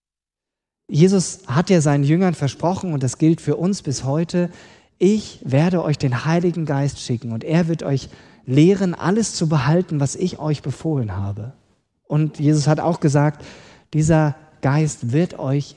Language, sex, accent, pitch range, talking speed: German, male, German, 125-165 Hz, 160 wpm